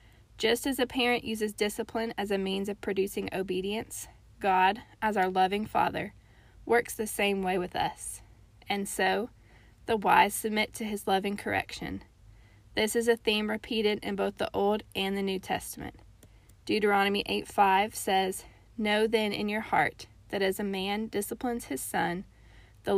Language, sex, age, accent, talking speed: English, female, 20-39, American, 160 wpm